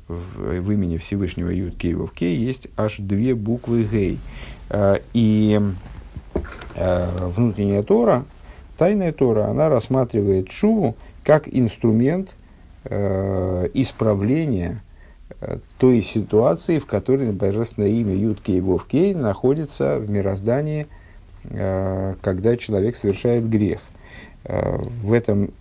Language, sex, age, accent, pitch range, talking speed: Russian, male, 50-69, native, 95-125 Hz, 95 wpm